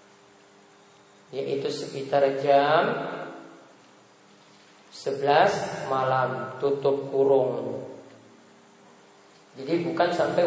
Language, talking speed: Malay, 55 wpm